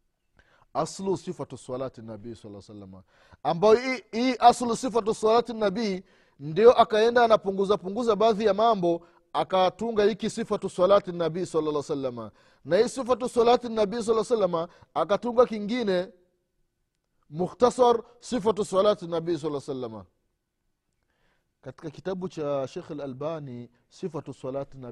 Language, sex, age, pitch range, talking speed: Swahili, male, 30-49, 130-220 Hz, 100 wpm